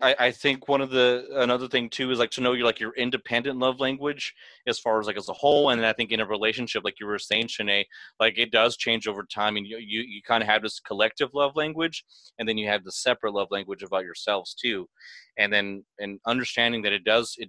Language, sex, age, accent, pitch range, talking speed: English, male, 30-49, American, 105-125 Hz, 255 wpm